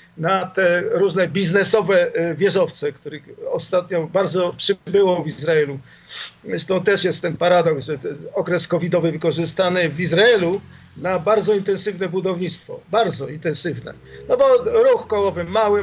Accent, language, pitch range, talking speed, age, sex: native, Polish, 165-210 Hz, 130 wpm, 50-69, male